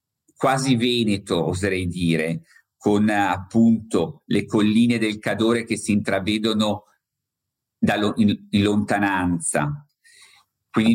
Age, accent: 50-69, native